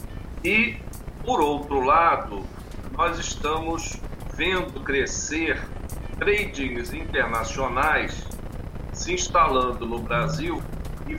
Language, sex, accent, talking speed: Portuguese, male, Brazilian, 80 wpm